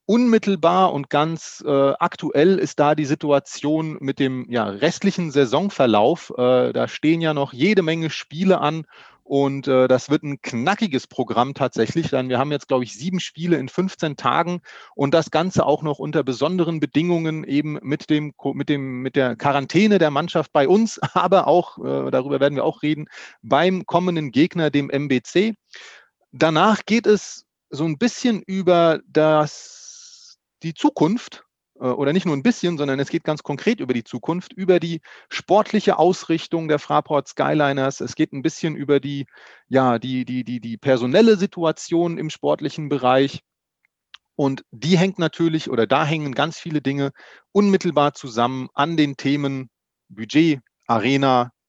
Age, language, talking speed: 30-49, German, 155 wpm